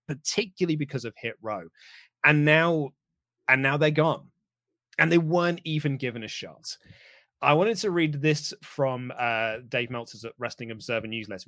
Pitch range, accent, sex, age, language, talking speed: 125-165 Hz, British, male, 30-49, English, 155 wpm